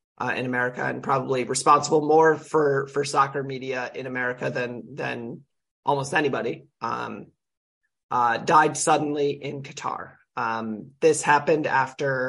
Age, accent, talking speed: 30-49, American, 130 wpm